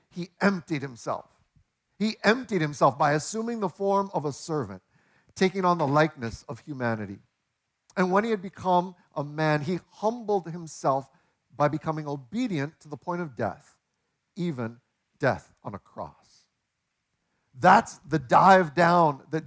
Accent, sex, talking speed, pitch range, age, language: American, male, 145 wpm, 150-195 Hz, 50-69, English